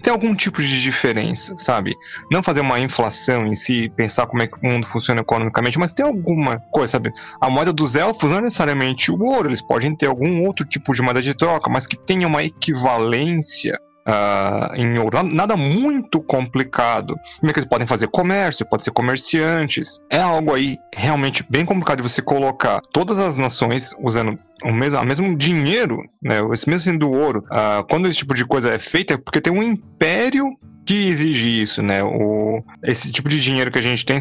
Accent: Brazilian